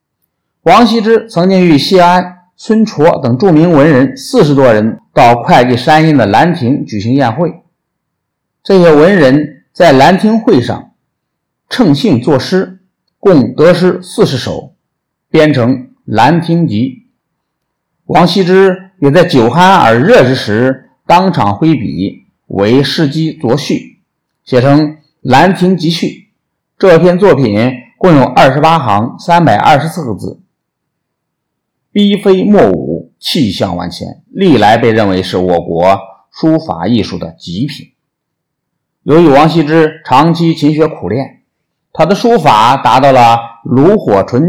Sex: male